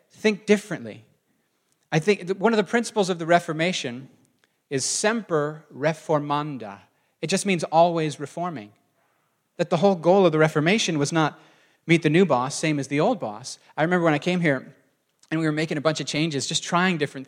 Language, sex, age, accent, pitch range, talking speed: English, male, 30-49, American, 145-200 Hz, 190 wpm